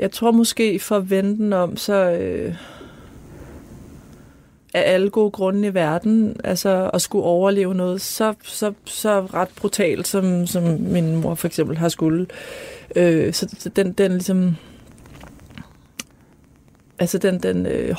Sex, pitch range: female, 175-205 Hz